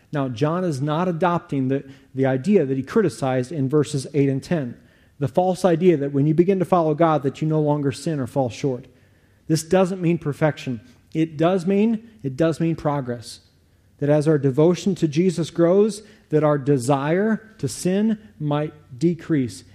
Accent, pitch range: American, 130-160 Hz